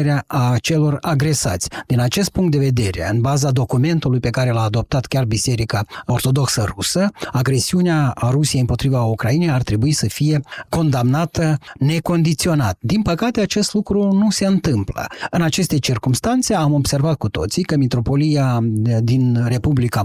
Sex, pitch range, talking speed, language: male, 125-165 Hz, 145 wpm, Romanian